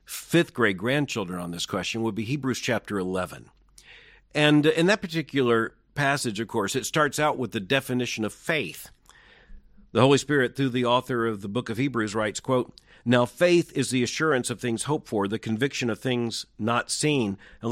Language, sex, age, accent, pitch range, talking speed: English, male, 50-69, American, 115-150 Hz, 185 wpm